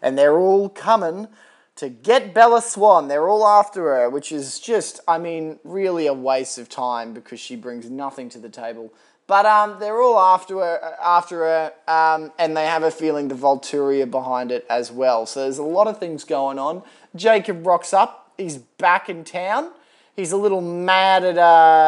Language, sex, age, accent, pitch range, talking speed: English, male, 20-39, Australian, 130-185 Hz, 195 wpm